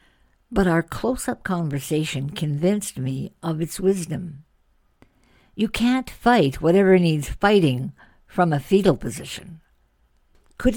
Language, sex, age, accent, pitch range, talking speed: English, female, 60-79, American, 135-185 Hz, 115 wpm